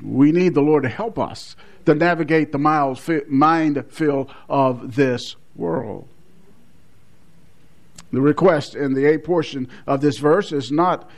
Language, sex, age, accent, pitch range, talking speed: English, male, 50-69, American, 150-195 Hz, 150 wpm